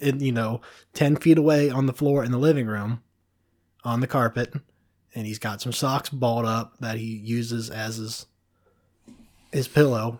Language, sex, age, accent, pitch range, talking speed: English, male, 20-39, American, 105-135 Hz, 175 wpm